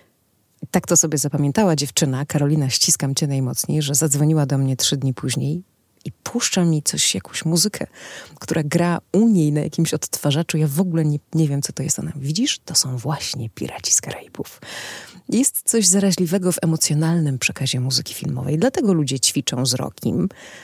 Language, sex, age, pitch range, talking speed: Polish, female, 30-49, 135-165 Hz, 170 wpm